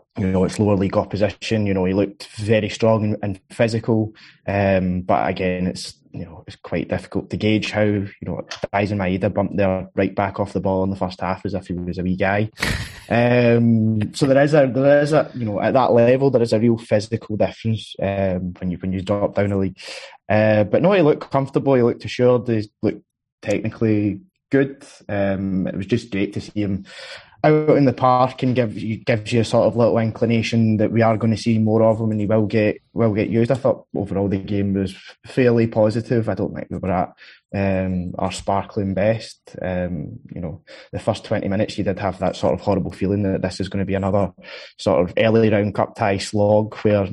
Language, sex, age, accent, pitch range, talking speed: English, male, 20-39, British, 95-115 Hz, 225 wpm